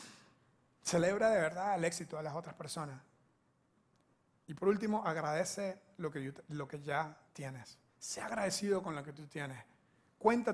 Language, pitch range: Spanish, 160-200 Hz